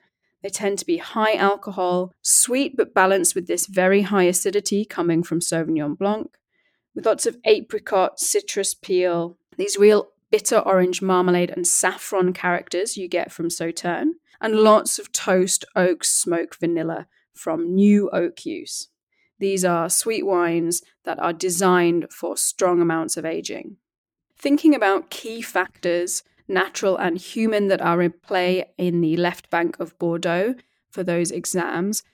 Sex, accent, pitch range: female, British, 175-210 Hz